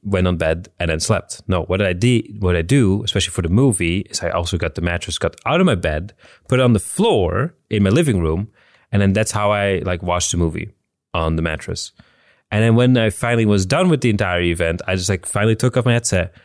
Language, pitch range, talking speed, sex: English, 90-120 Hz, 250 wpm, male